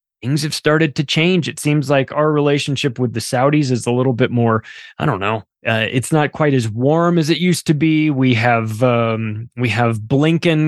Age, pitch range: 20-39, 120-155 Hz